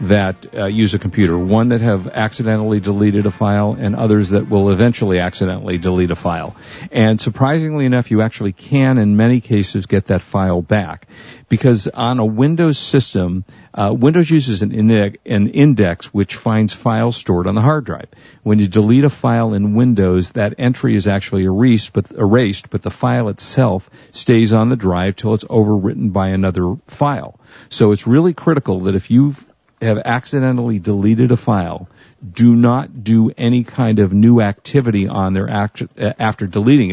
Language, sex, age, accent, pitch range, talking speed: English, male, 50-69, American, 100-120 Hz, 175 wpm